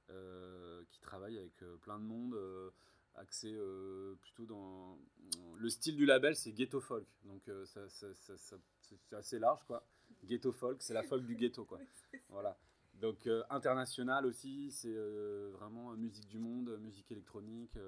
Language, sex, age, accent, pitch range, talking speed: French, male, 30-49, French, 95-115 Hz, 170 wpm